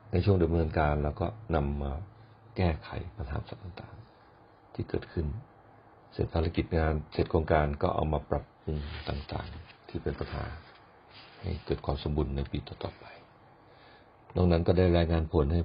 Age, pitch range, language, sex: 60-79, 75-95 Hz, Thai, male